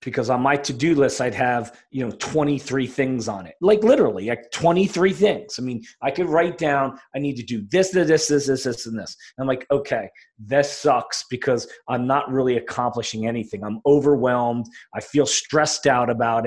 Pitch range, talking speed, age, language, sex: 120-145 Hz, 195 wpm, 30-49, English, male